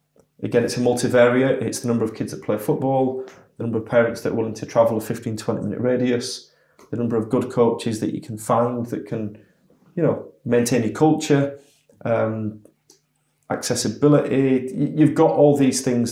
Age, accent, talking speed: 30-49, British, 180 wpm